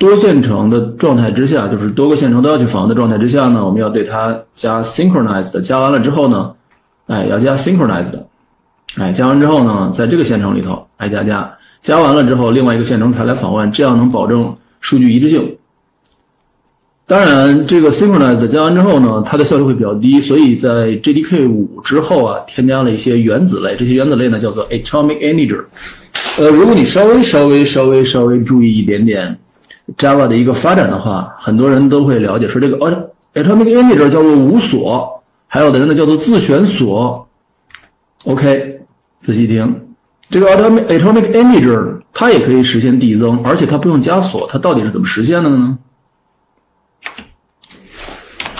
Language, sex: Chinese, male